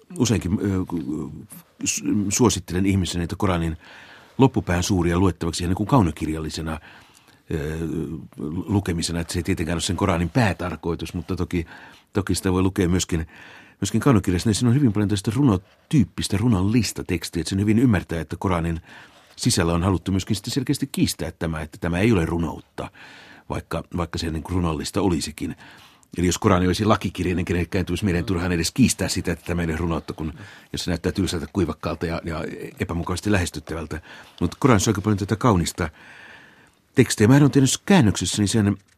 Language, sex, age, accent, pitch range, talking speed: Finnish, male, 60-79, native, 85-105 Hz, 150 wpm